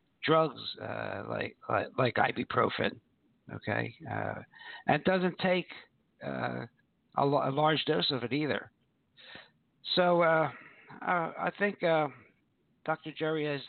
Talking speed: 125 wpm